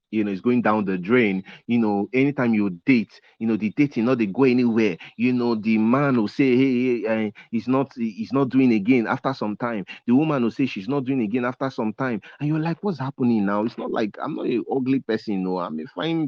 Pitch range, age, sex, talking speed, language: 95-130 Hz, 40-59, male, 255 wpm, English